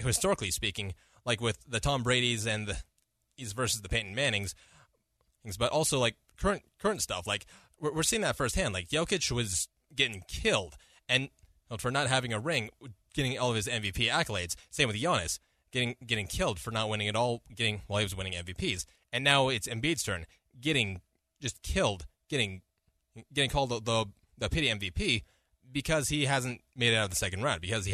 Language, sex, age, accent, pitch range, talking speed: English, male, 20-39, American, 95-140 Hz, 190 wpm